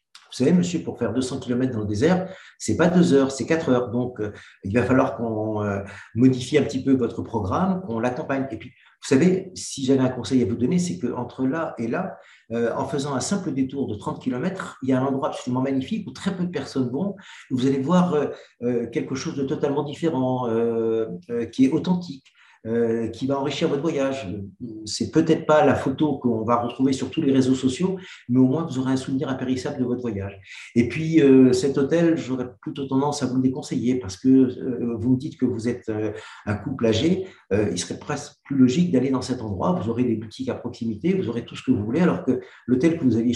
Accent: French